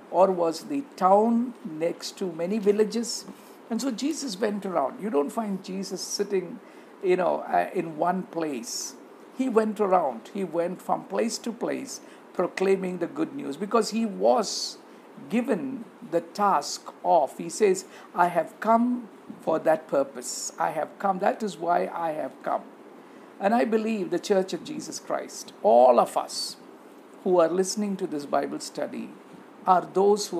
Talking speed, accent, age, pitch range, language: 160 wpm, Indian, 50-69, 180-240 Hz, English